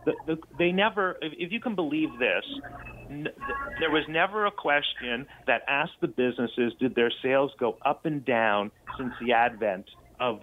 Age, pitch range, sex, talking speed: 40-59, 115-155 Hz, male, 160 wpm